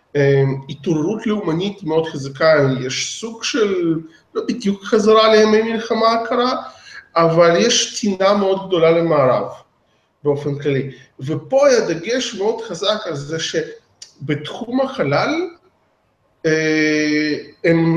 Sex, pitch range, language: male, 145-205 Hz, Hebrew